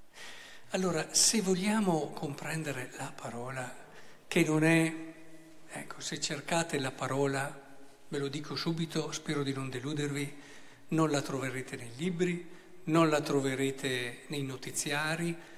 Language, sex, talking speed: Italian, male, 125 wpm